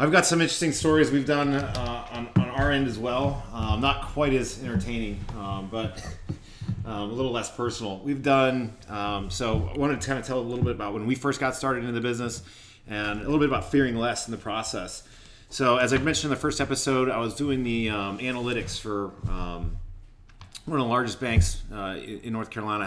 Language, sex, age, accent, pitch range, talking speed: English, male, 30-49, American, 100-125 Hz, 220 wpm